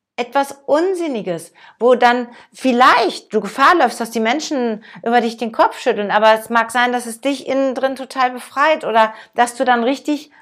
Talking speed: 185 wpm